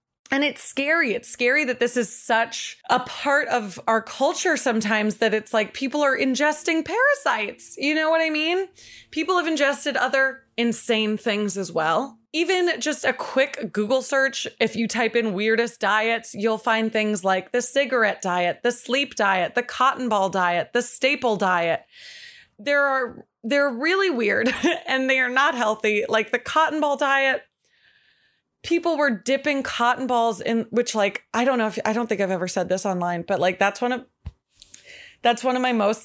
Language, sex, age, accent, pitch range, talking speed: English, female, 20-39, American, 215-280 Hz, 180 wpm